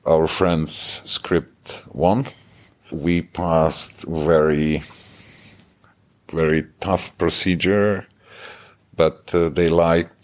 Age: 50-69